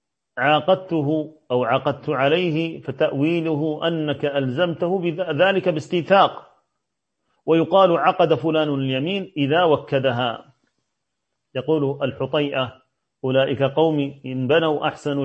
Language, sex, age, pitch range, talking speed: Arabic, male, 40-59, 135-165 Hz, 85 wpm